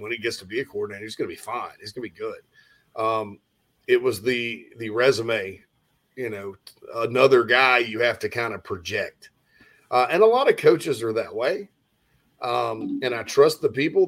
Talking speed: 205 wpm